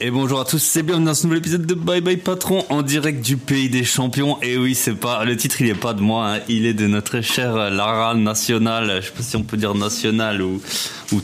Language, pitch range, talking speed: French, 105-125 Hz, 260 wpm